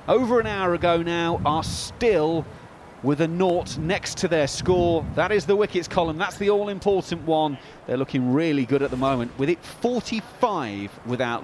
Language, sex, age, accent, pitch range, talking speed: English, male, 30-49, British, 125-165 Hz, 180 wpm